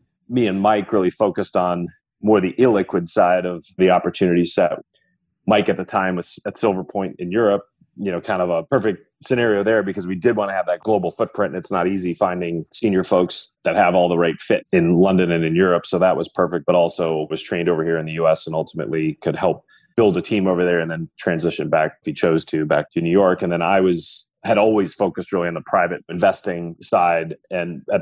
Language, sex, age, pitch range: English, male, 30-49, 85-95 Hz